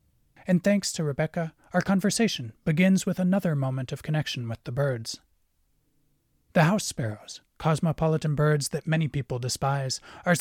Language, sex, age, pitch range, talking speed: English, male, 30-49, 125-175 Hz, 145 wpm